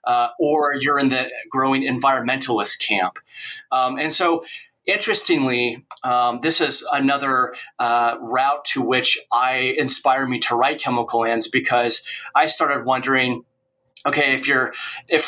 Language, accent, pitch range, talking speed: English, American, 125-150 Hz, 140 wpm